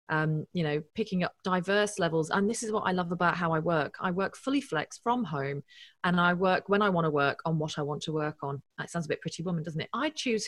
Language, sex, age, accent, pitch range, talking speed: English, female, 30-49, British, 155-195 Hz, 275 wpm